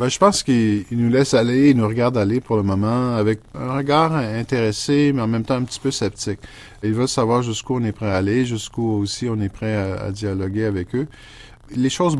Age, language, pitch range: 50-69, French, 105-125 Hz